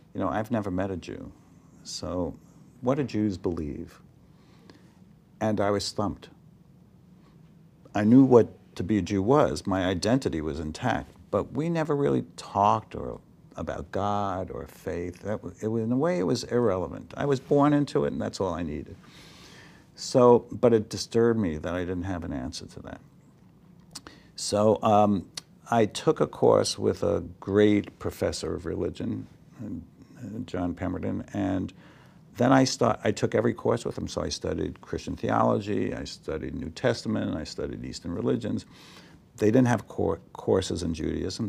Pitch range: 95-125 Hz